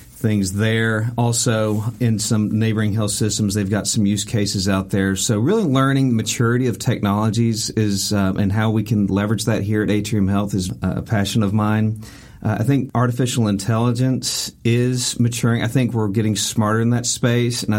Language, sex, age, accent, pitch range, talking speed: English, male, 50-69, American, 105-120 Hz, 185 wpm